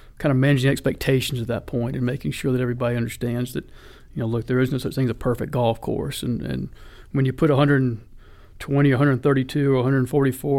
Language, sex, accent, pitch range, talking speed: English, male, American, 125-145 Hz, 200 wpm